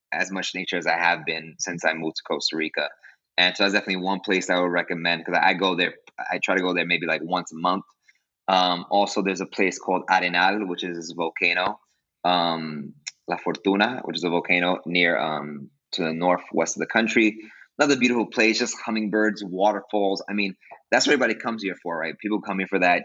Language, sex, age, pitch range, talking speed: English, male, 20-39, 90-110 Hz, 215 wpm